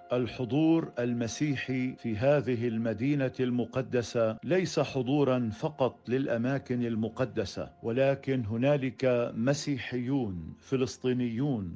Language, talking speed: Arabic, 75 wpm